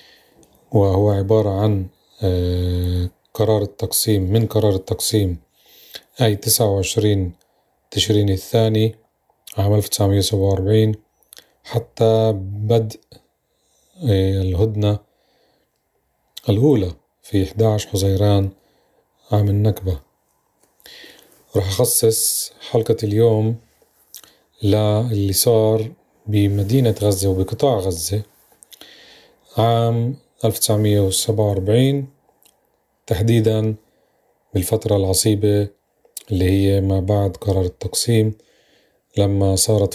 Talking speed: 75 wpm